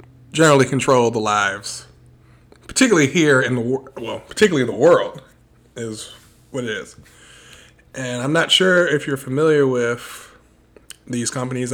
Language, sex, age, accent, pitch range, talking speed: English, male, 20-39, American, 115-150 Hz, 140 wpm